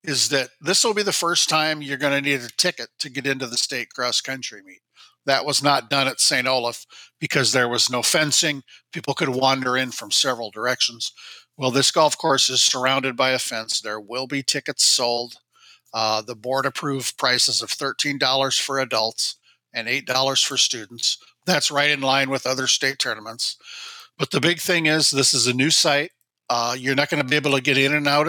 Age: 50-69